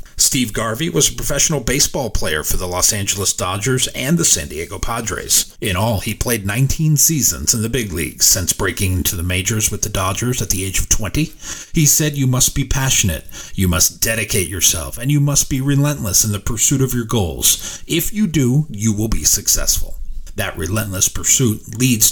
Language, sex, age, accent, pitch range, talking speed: English, male, 40-59, American, 95-135 Hz, 195 wpm